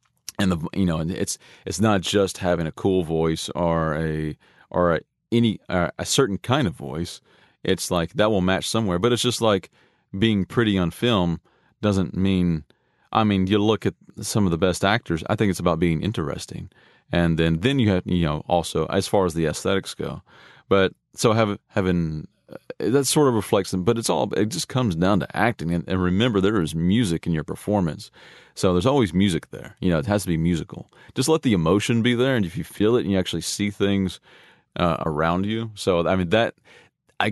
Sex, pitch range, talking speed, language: male, 80-100 Hz, 210 wpm, English